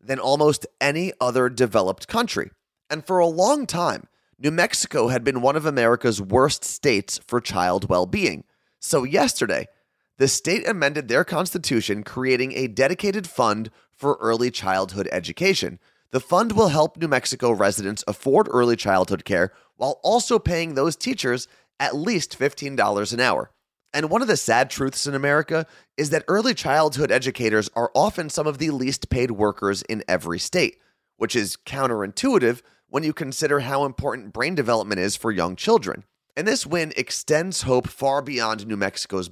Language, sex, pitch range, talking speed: English, male, 110-155 Hz, 160 wpm